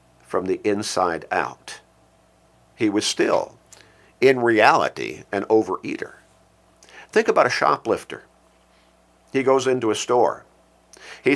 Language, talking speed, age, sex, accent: English, 110 wpm, 50-69, male, American